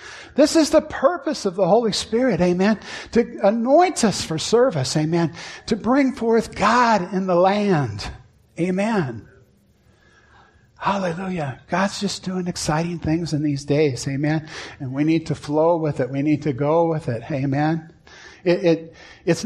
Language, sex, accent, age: English, male, American, 50-69